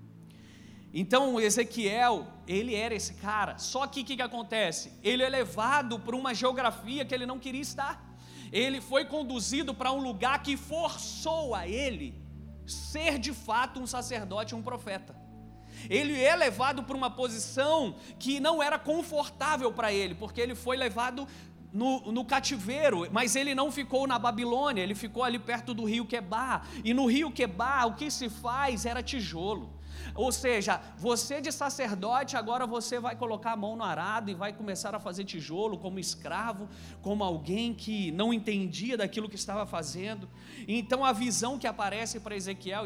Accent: Brazilian